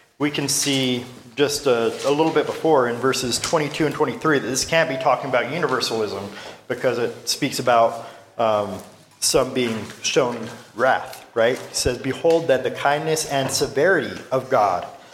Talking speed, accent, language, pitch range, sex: 165 wpm, American, English, 120-145 Hz, male